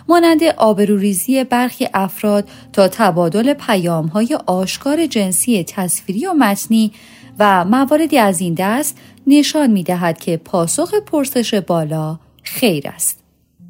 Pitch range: 190-265 Hz